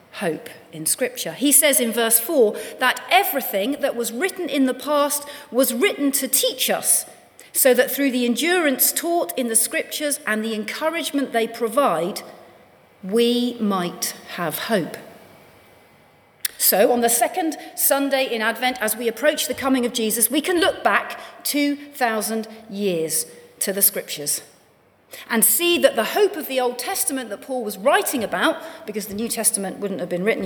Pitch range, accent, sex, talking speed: 215-280 Hz, British, female, 165 wpm